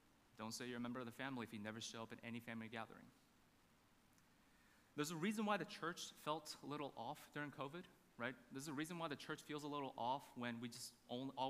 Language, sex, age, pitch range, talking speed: English, male, 20-39, 120-155 Hz, 235 wpm